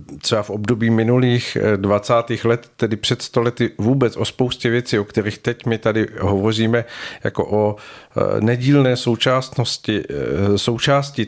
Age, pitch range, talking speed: 50-69, 105-125 Hz, 120 wpm